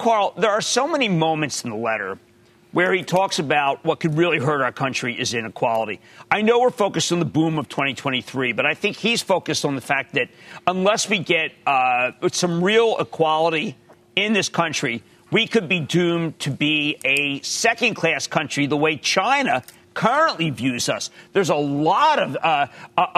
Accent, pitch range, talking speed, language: American, 160-235 Hz, 180 wpm, English